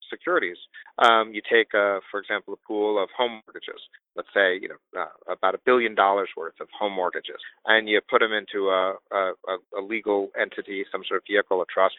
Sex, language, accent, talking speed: male, English, American, 205 wpm